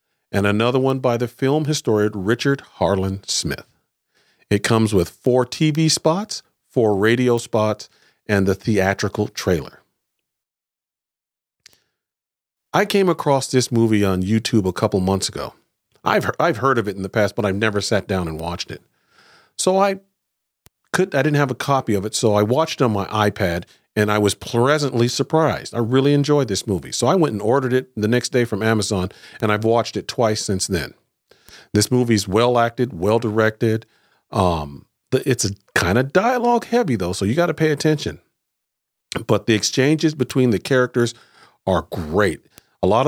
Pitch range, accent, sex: 105-135 Hz, American, male